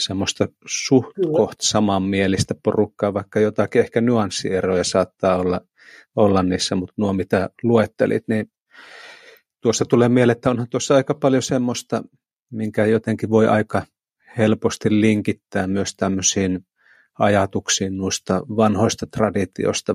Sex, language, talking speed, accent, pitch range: male, Finnish, 115 wpm, native, 95-110 Hz